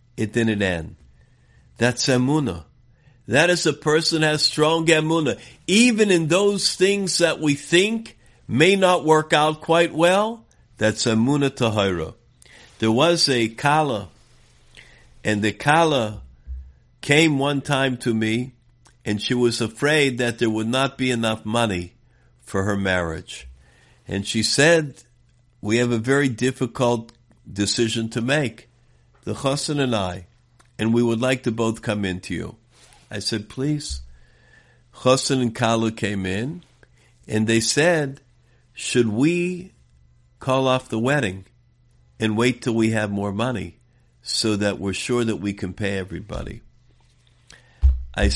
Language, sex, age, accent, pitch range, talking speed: English, male, 50-69, American, 105-145 Hz, 145 wpm